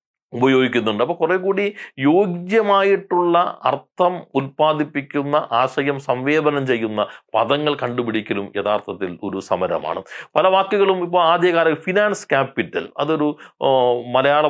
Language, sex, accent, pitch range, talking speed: Malayalam, male, native, 125-175 Hz, 95 wpm